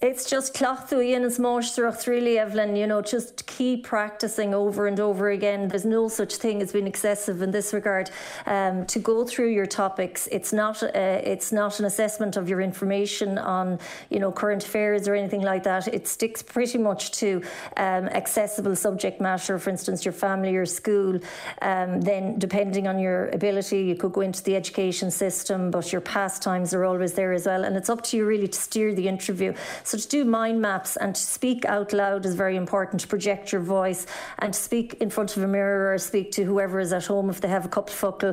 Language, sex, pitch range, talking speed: English, female, 190-210 Hz, 210 wpm